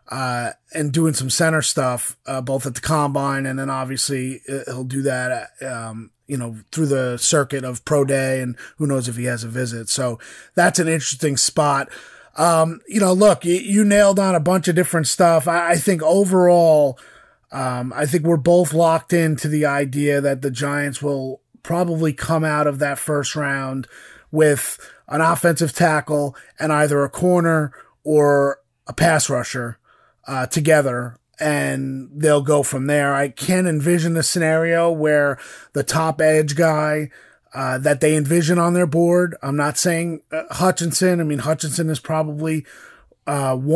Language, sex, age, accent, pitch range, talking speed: English, male, 30-49, American, 135-170 Hz, 165 wpm